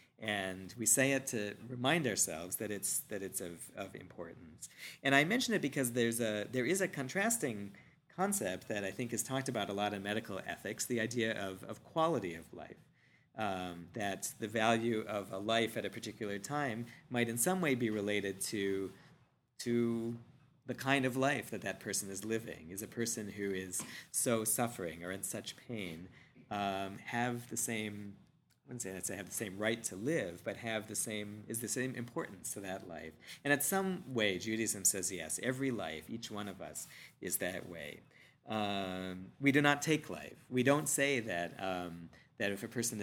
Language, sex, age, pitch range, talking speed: English, male, 40-59, 95-120 Hz, 195 wpm